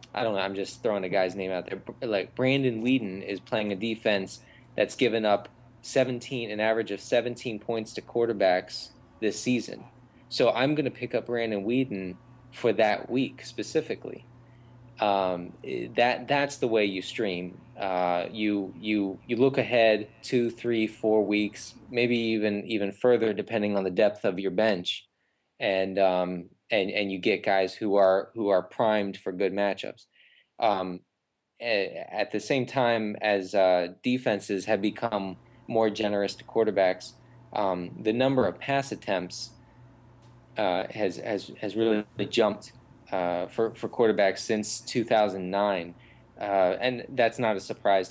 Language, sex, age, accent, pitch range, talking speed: English, male, 20-39, American, 95-120 Hz, 155 wpm